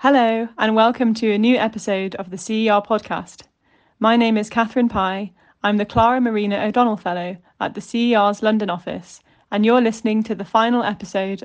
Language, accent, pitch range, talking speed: English, British, 195-230 Hz, 180 wpm